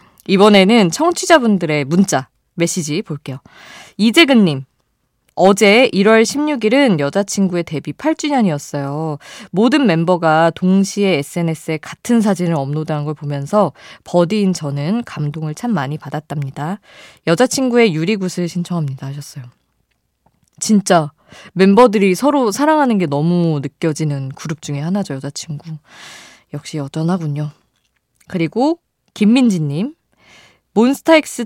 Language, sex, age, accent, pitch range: Korean, female, 20-39, native, 150-220 Hz